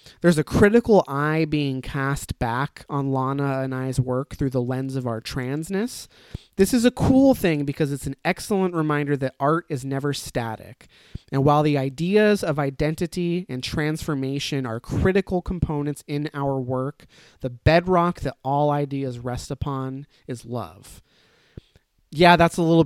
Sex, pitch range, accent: male, 130-160 Hz, American